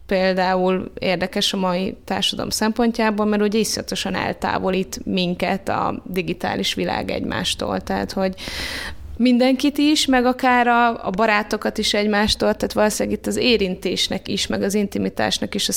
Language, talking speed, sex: Hungarian, 135 wpm, female